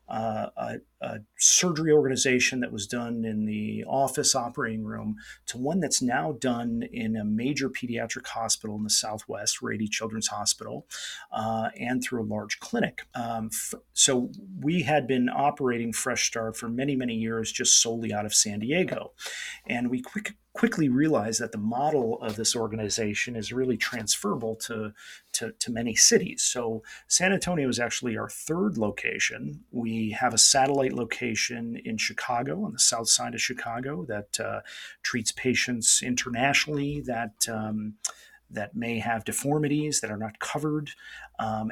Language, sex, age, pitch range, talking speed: English, male, 40-59, 110-140 Hz, 155 wpm